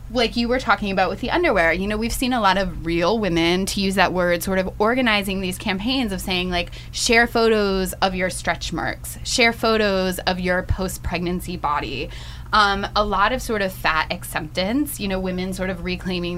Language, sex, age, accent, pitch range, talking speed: English, female, 20-39, American, 170-210 Hz, 200 wpm